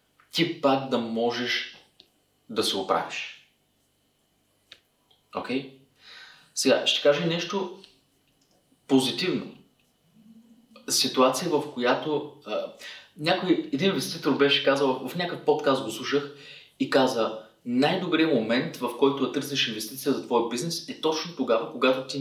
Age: 30-49